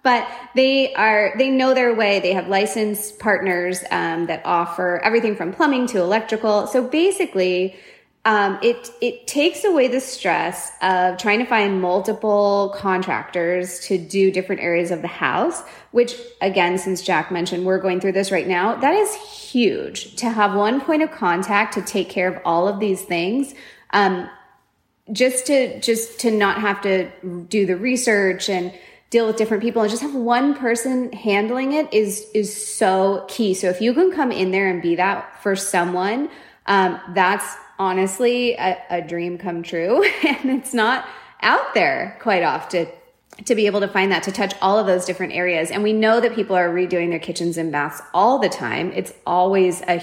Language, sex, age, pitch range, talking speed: English, female, 20-39, 185-235 Hz, 185 wpm